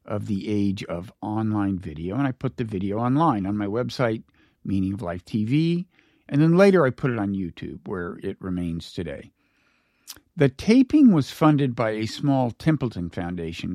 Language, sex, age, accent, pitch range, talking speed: English, male, 50-69, American, 100-145 Hz, 175 wpm